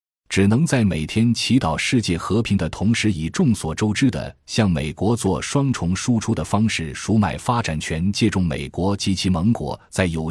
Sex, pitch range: male, 80-110 Hz